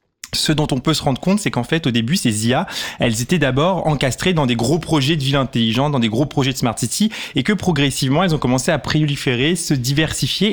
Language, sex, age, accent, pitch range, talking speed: French, male, 20-39, French, 130-165 Hz, 240 wpm